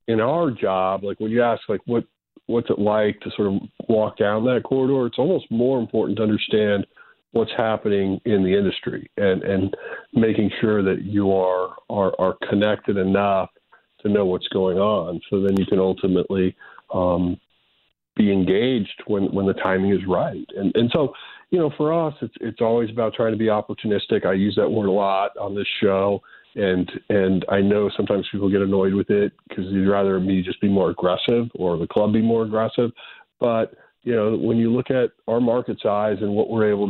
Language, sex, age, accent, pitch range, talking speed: English, male, 40-59, American, 95-115 Hz, 200 wpm